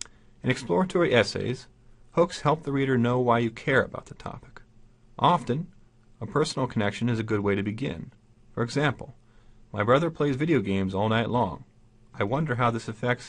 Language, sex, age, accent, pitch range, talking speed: English, male, 40-59, American, 110-130 Hz, 175 wpm